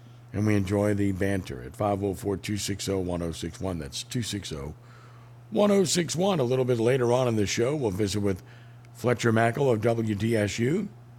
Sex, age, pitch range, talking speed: male, 60-79, 105-120 Hz, 130 wpm